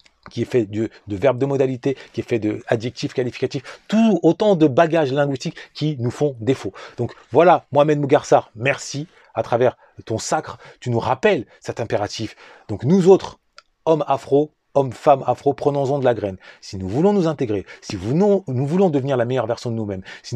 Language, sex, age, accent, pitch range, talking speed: French, male, 30-49, French, 110-145 Hz, 190 wpm